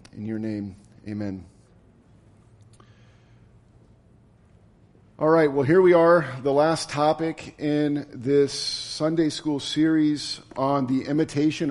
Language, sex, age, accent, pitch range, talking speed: English, male, 40-59, American, 120-160 Hz, 110 wpm